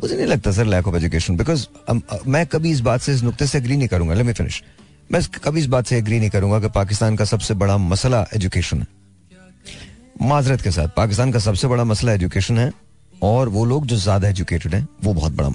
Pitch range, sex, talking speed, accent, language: 100-135 Hz, male, 140 wpm, native, Hindi